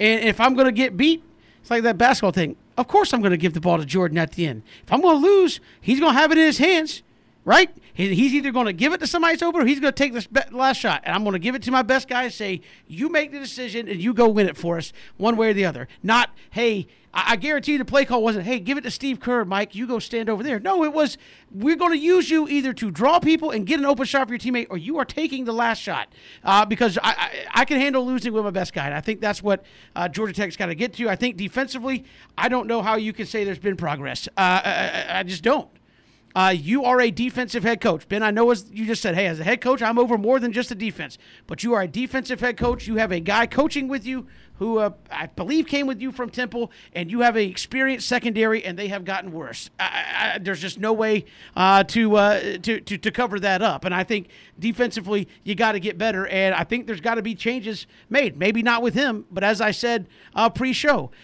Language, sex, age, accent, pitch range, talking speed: English, male, 40-59, American, 205-265 Hz, 270 wpm